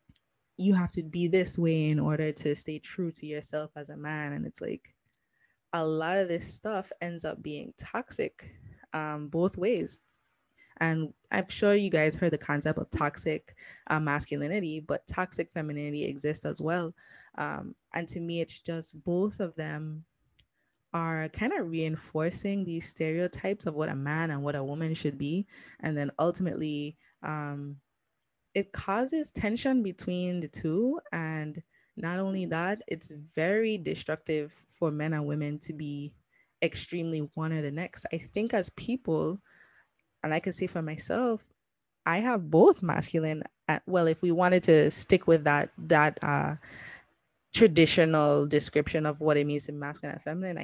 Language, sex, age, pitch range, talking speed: English, female, 20-39, 150-180 Hz, 160 wpm